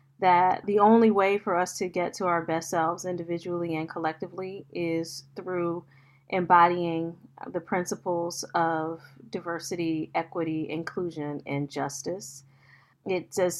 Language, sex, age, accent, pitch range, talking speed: English, female, 30-49, American, 165-190 Hz, 125 wpm